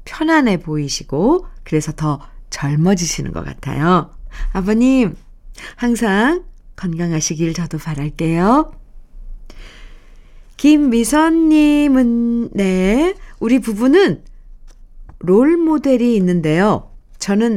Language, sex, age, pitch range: Korean, female, 50-69, 175-260 Hz